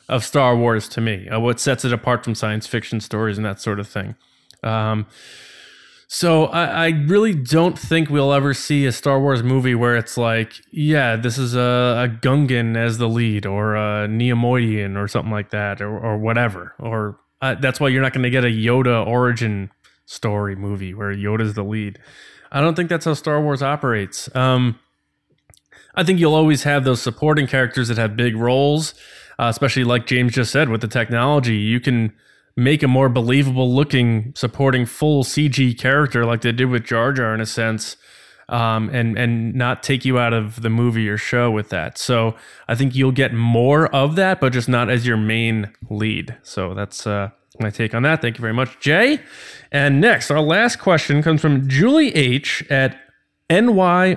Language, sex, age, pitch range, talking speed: English, male, 20-39, 115-140 Hz, 195 wpm